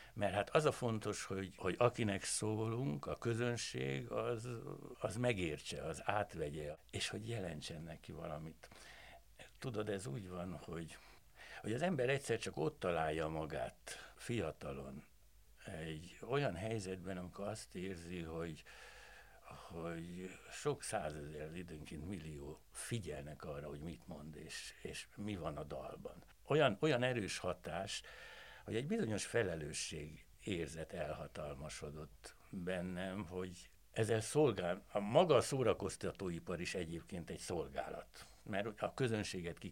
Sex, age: male, 60-79